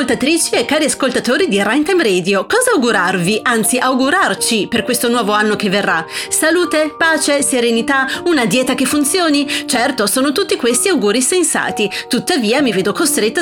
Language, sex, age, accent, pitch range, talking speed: Italian, female, 30-49, native, 215-300 Hz, 150 wpm